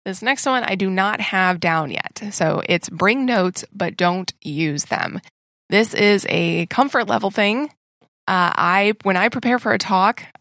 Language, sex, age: English, female, 20-39